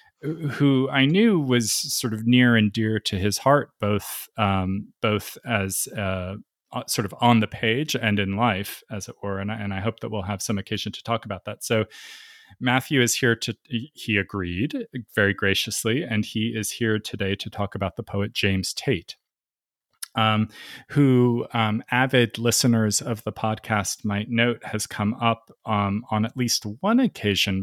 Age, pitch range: 30-49, 100-115 Hz